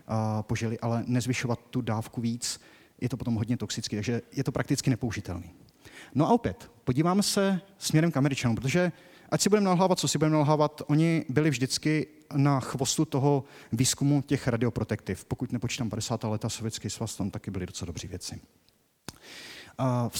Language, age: Czech, 30-49